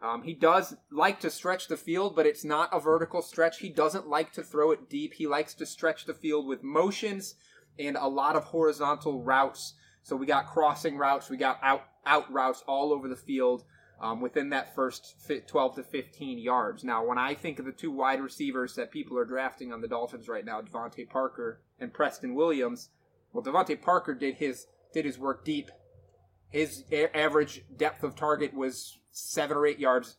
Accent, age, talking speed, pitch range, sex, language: American, 20-39, 200 wpm, 130-160 Hz, male, English